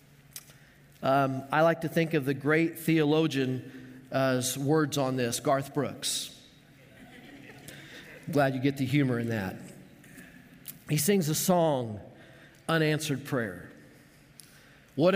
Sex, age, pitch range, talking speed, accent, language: male, 40-59, 150-180 Hz, 115 wpm, American, English